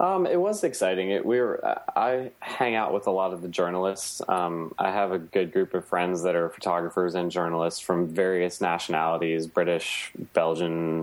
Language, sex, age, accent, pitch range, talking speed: English, male, 20-39, American, 80-95 Hz, 190 wpm